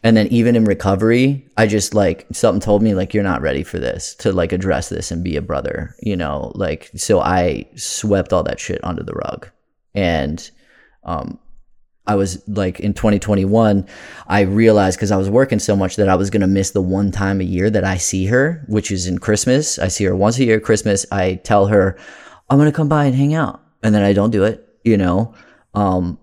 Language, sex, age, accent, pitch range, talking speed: English, male, 20-39, American, 95-110 Hz, 225 wpm